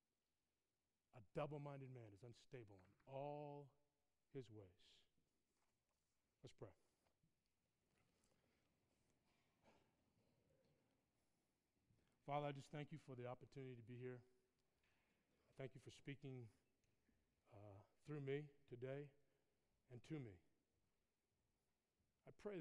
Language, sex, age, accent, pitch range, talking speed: English, male, 40-59, American, 115-145 Hz, 95 wpm